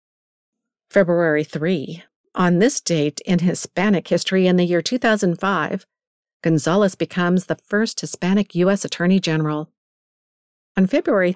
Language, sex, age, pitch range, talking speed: English, female, 50-69, 160-195 Hz, 115 wpm